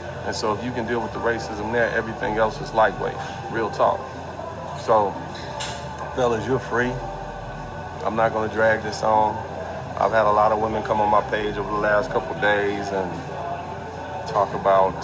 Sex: male